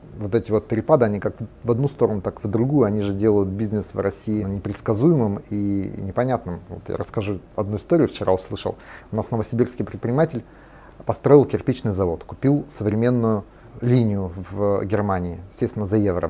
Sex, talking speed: male, 160 wpm